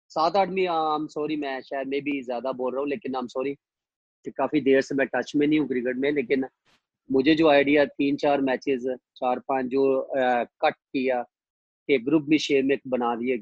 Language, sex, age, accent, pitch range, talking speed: English, male, 30-49, Indian, 135-165 Hz, 75 wpm